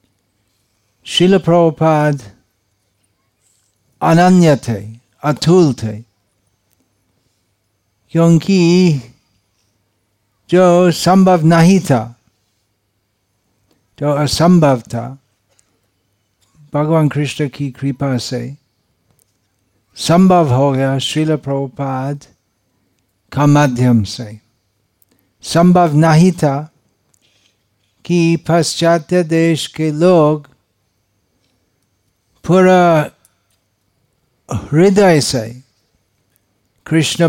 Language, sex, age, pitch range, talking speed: Hindi, male, 60-79, 105-155 Hz, 60 wpm